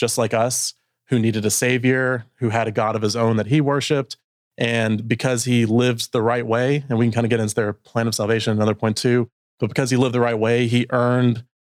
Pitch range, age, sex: 110-125 Hz, 30-49, male